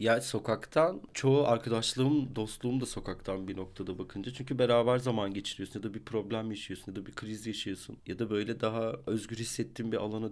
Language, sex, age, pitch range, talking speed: Turkish, male, 40-59, 100-125 Hz, 190 wpm